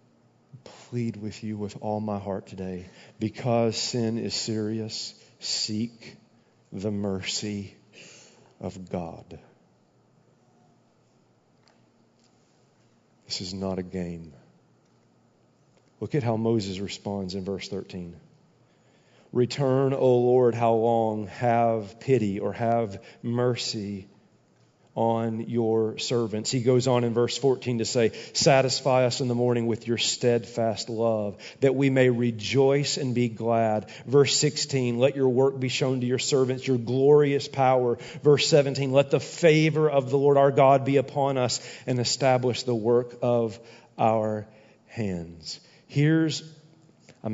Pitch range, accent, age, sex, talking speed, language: 110-130 Hz, American, 40-59, male, 130 wpm, English